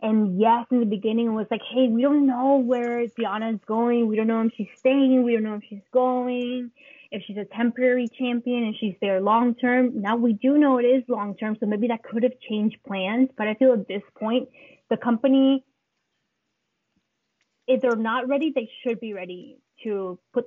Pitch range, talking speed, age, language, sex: 205-240 Hz, 200 wpm, 20-39, English, female